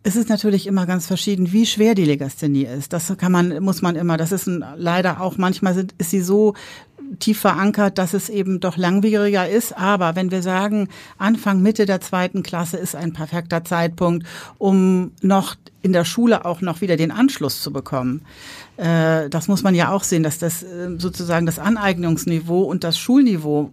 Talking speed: 180 wpm